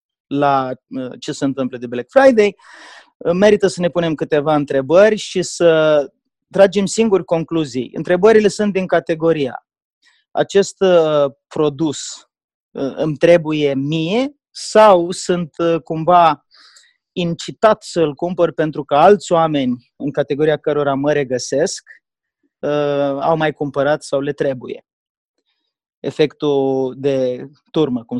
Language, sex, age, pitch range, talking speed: Romanian, male, 30-49, 135-170 Hz, 115 wpm